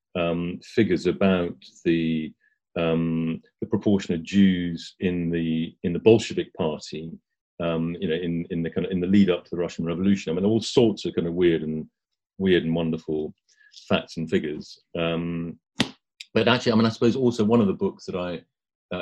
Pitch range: 85-115 Hz